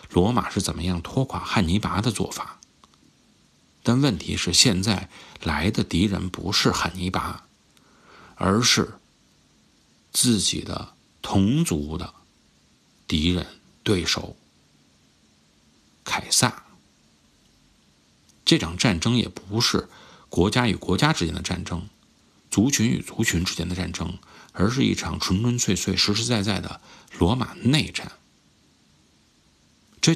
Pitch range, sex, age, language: 85-110 Hz, male, 50-69, Chinese